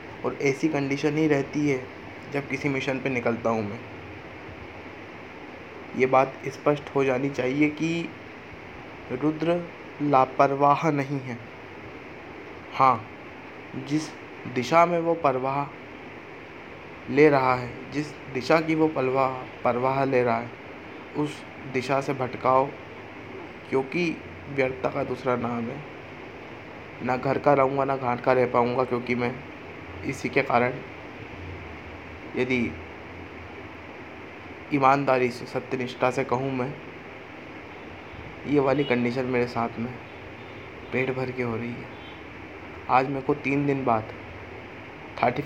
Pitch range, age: 120-150 Hz, 20-39